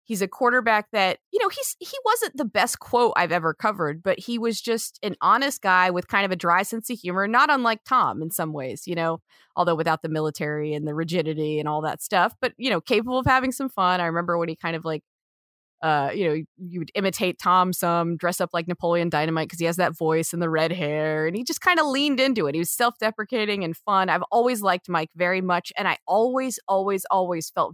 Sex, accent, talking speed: female, American, 240 wpm